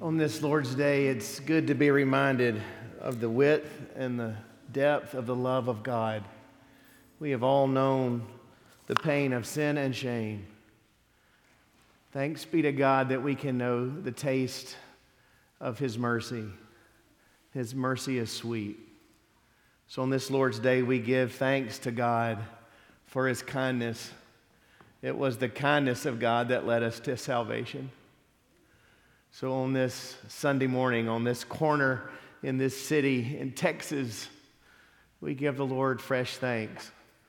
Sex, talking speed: male, 145 wpm